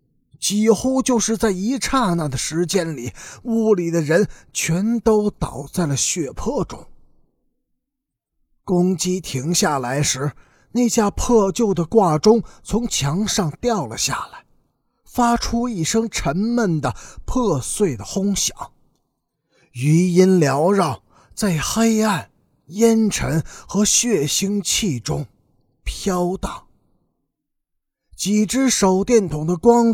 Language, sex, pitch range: Chinese, male, 160-225 Hz